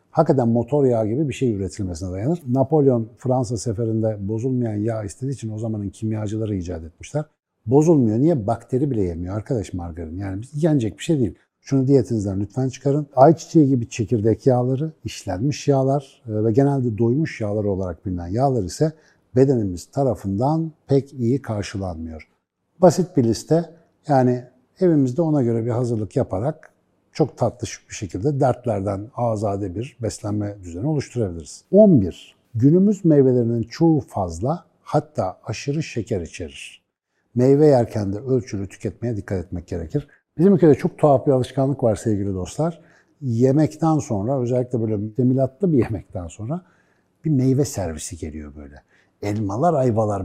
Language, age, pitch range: Turkish, 60-79, 105-140 Hz